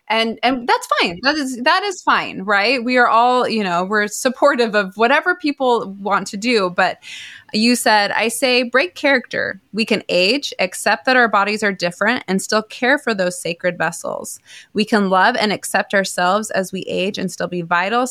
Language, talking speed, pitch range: English, 195 wpm, 190-250 Hz